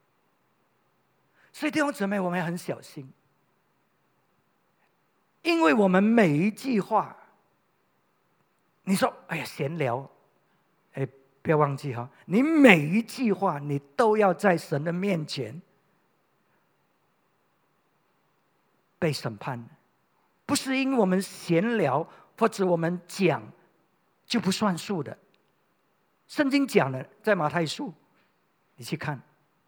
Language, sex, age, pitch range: English, male, 50-69, 140-220 Hz